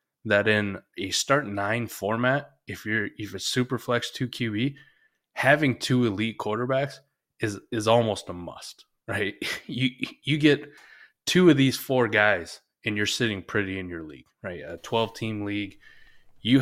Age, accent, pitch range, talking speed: 20-39, American, 100-120 Hz, 160 wpm